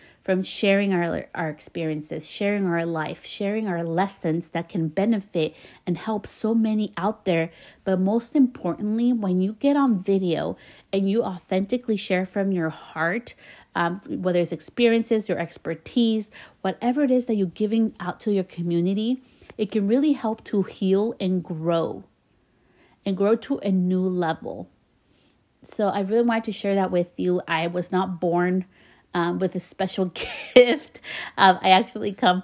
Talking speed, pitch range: 160 wpm, 170-210 Hz